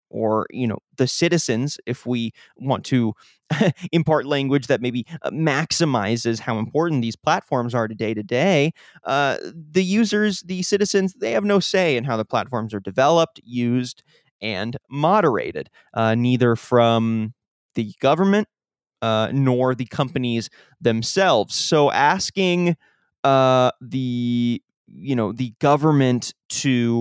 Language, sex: English, male